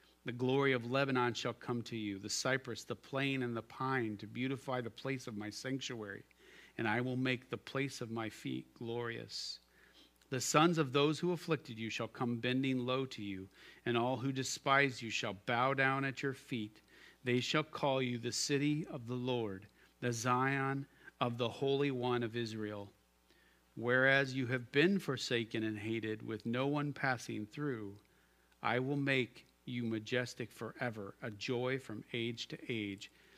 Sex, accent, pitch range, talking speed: male, American, 115-140 Hz, 175 wpm